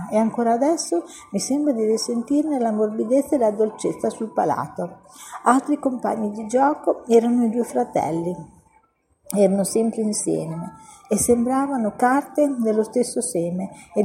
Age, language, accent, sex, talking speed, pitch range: 50-69, Italian, native, female, 135 wpm, 200-270 Hz